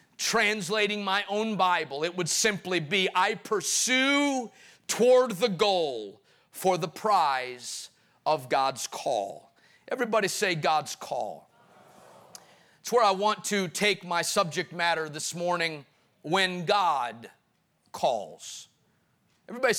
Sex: male